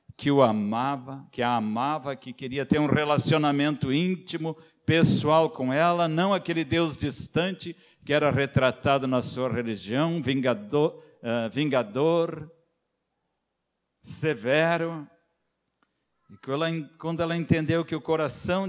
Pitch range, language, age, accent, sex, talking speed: 110-150 Hz, Portuguese, 60-79, Brazilian, male, 115 wpm